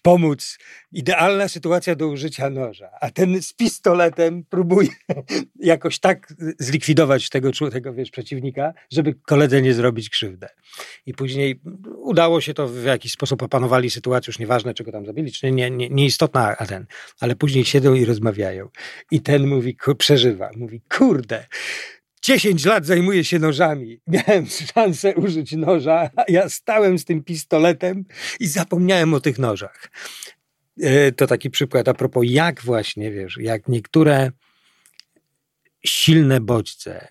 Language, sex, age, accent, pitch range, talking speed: Polish, male, 40-59, native, 120-165 Hz, 140 wpm